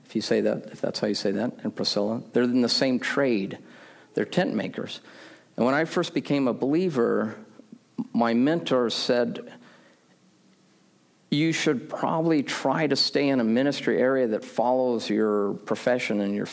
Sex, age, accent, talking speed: male, 50-69, American, 165 wpm